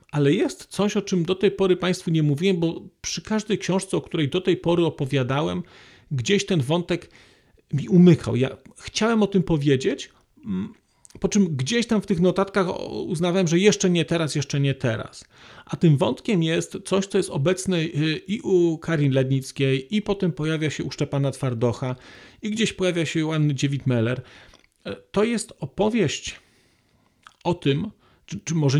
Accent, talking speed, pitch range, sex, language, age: native, 165 wpm, 140-185 Hz, male, Polish, 40-59